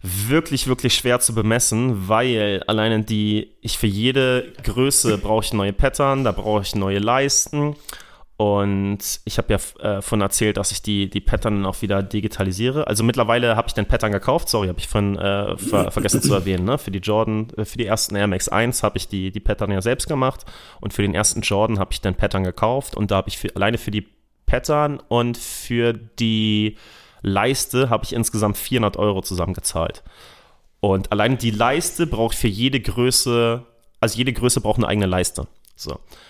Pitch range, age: 100-115 Hz, 30-49